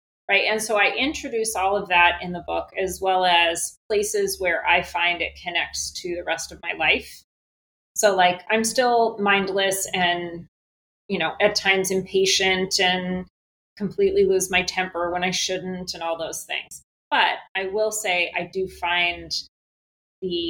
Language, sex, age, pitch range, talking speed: English, female, 30-49, 170-200 Hz, 165 wpm